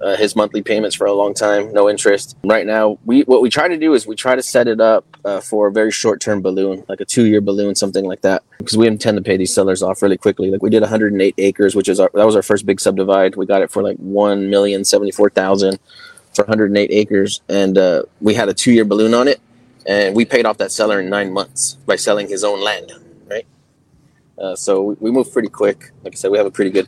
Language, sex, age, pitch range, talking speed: English, male, 20-39, 100-120 Hz, 250 wpm